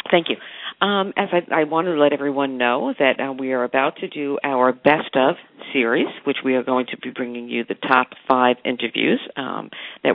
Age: 50-69